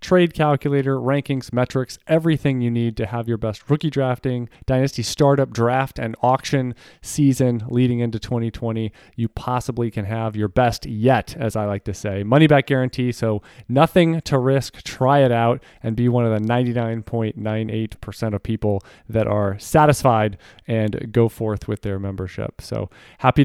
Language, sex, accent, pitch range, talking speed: English, male, American, 115-140 Hz, 160 wpm